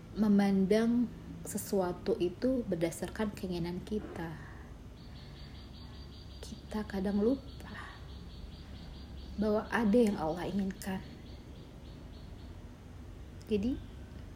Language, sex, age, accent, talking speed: Indonesian, female, 30-49, native, 65 wpm